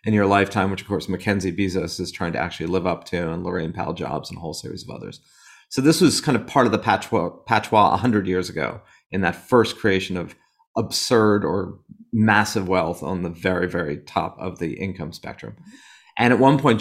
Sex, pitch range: male, 95-120 Hz